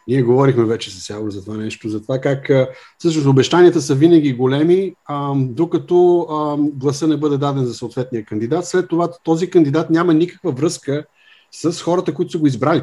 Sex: male